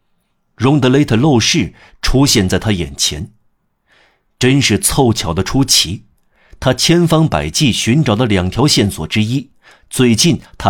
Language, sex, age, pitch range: Chinese, male, 50-69, 95-130 Hz